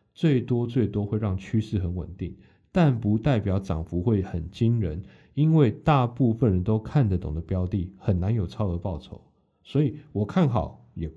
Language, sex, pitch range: Chinese, male, 95-130 Hz